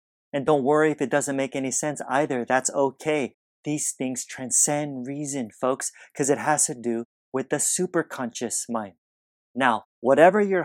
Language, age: English, 30-49